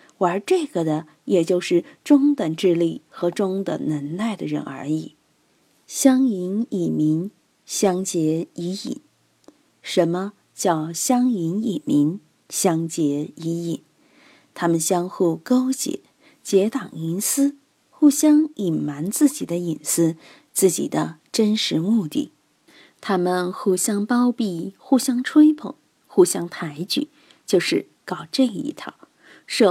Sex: female